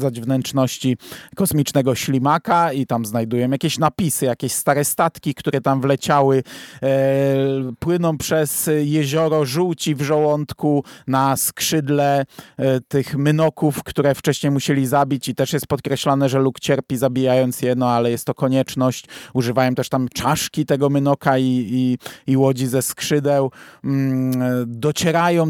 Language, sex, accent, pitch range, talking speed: Polish, male, native, 135-150 Hz, 125 wpm